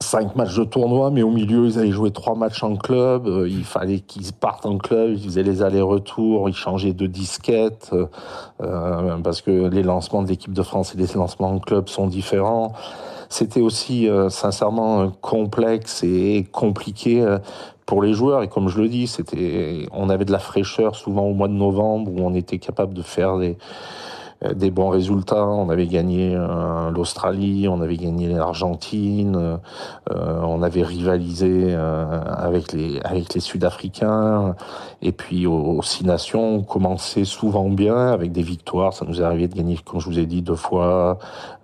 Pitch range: 90-110 Hz